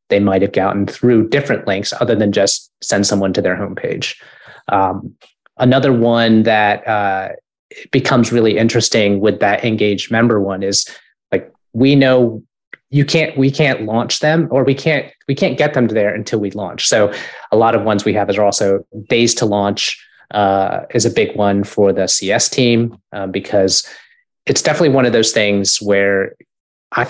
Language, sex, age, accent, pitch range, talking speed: English, male, 30-49, American, 100-125 Hz, 180 wpm